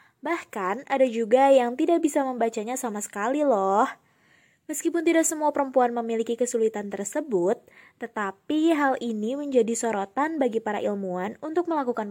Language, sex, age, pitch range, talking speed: Indonesian, female, 20-39, 205-275 Hz, 135 wpm